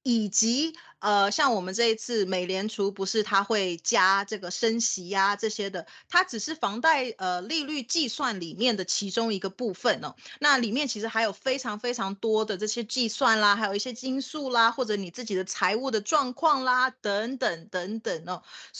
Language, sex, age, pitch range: Chinese, female, 20-39, 195-250 Hz